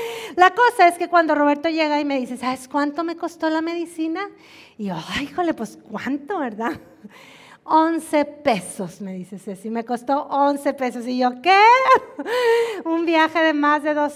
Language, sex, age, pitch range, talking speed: Spanish, female, 40-59, 225-300 Hz, 170 wpm